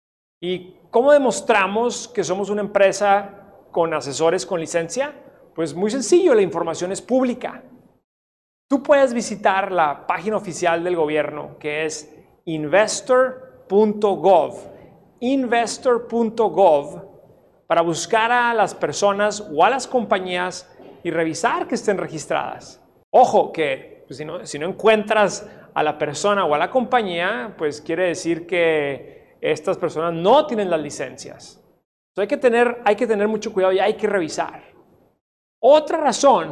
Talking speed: 140 wpm